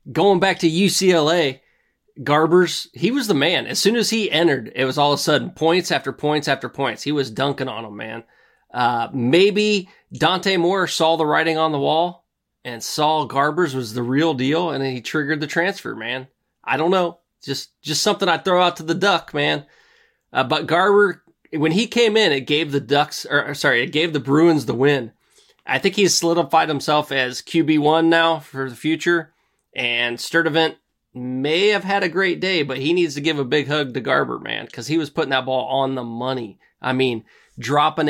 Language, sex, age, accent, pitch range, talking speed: English, male, 30-49, American, 135-170 Hz, 205 wpm